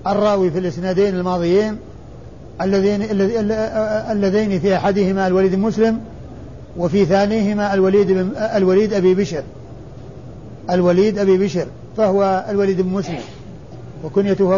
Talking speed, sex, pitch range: 100 wpm, male, 180-205 Hz